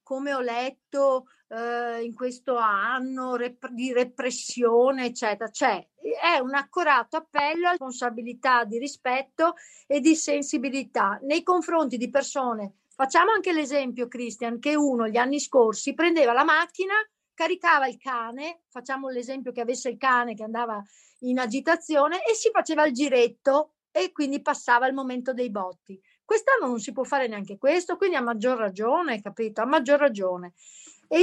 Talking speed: 150 wpm